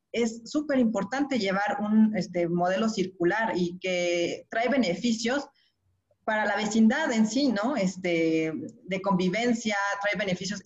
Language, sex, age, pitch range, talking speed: Spanish, female, 30-49, 180-225 Hz, 130 wpm